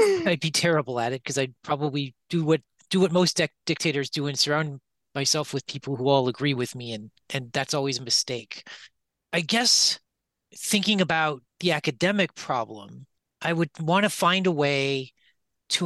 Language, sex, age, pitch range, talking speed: English, male, 40-59, 130-155 Hz, 180 wpm